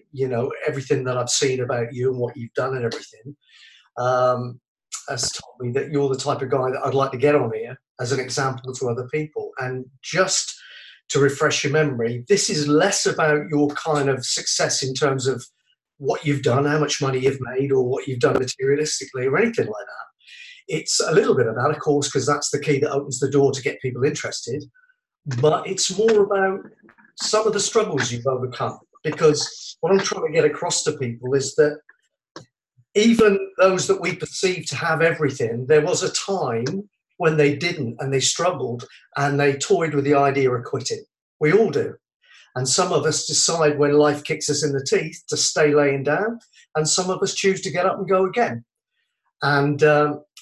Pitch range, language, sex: 135-170 Hz, English, male